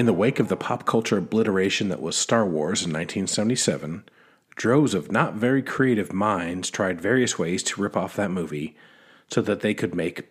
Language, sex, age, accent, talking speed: English, male, 40-59, American, 190 wpm